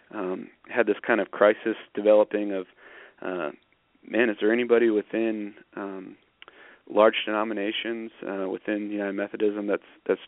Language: English